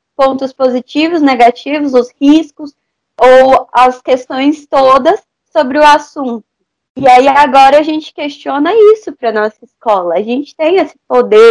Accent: Brazilian